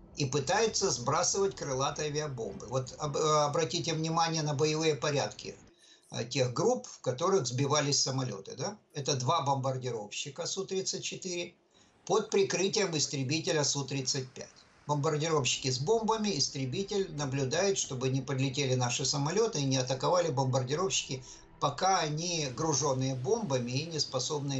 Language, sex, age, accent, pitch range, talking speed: Russian, male, 50-69, native, 135-170 Hz, 115 wpm